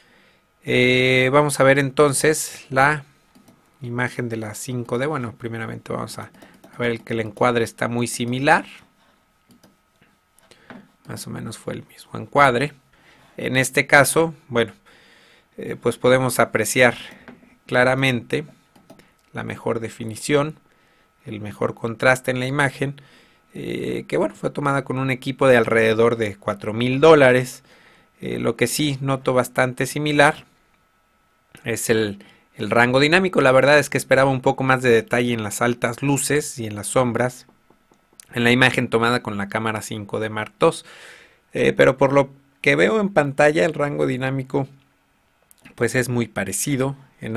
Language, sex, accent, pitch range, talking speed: Spanish, male, Mexican, 115-135 Hz, 145 wpm